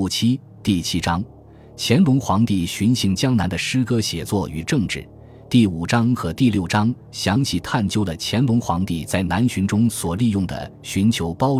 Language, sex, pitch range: Chinese, male, 85-115 Hz